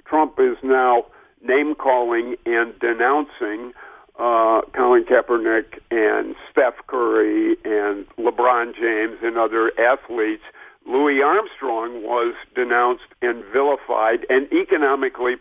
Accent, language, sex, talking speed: American, English, male, 100 wpm